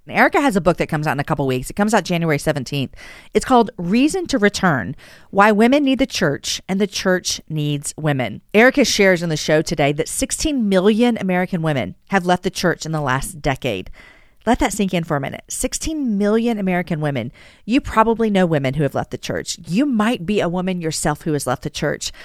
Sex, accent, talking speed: female, American, 220 wpm